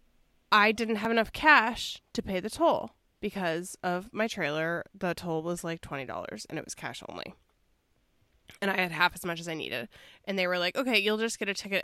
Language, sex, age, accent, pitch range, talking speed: English, female, 20-39, American, 160-205 Hz, 215 wpm